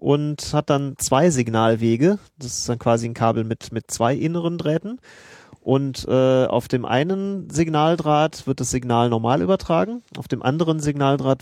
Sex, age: male, 30-49